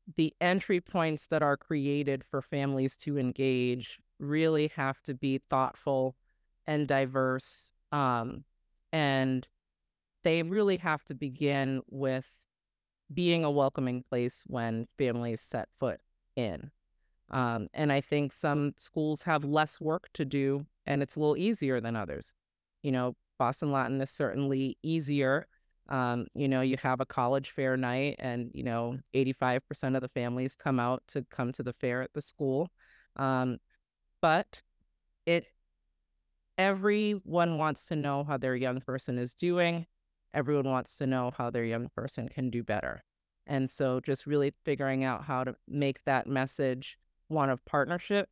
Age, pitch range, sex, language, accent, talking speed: 30-49, 130-150 Hz, female, English, American, 155 wpm